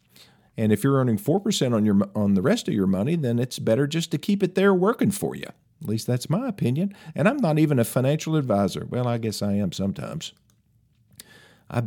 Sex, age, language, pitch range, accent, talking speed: male, 50-69, English, 100-145 Hz, American, 215 wpm